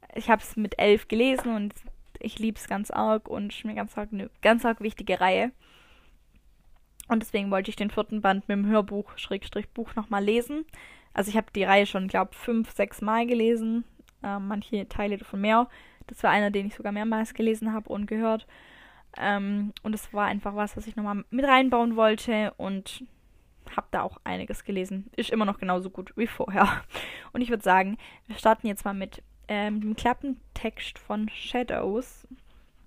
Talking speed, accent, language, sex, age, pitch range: 180 wpm, German, German, female, 10-29, 205-235 Hz